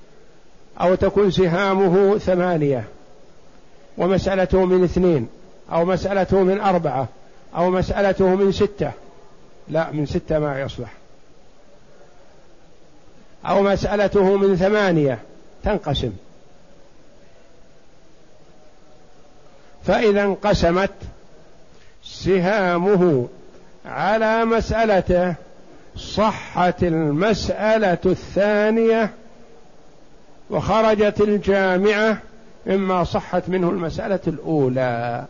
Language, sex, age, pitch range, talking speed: Arabic, male, 60-79, 175-210 Hz, 70 wpm